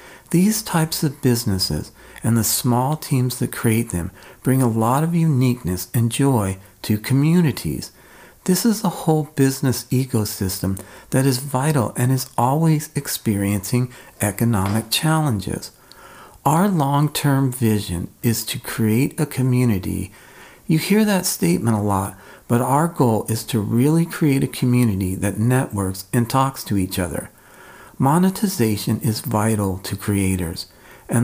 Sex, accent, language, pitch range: male, American, English, 100-140 Hz